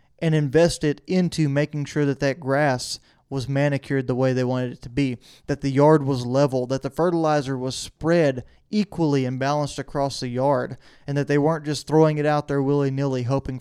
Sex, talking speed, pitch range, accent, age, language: male, 200 wpm, 135-160 Hz, American, 20-39, English